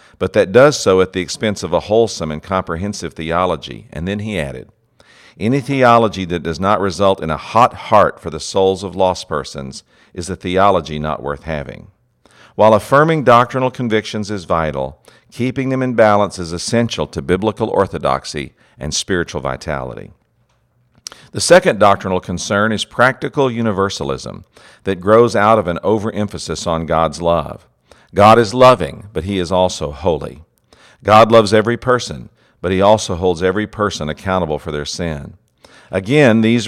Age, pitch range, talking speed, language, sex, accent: 50-69, 85-110 Hz, 160 wpm, English, male, American